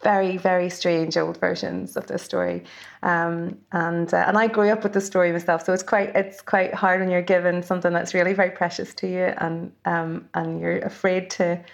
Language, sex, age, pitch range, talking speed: English, female, 30-49, 170-195 Hz, 210 wpm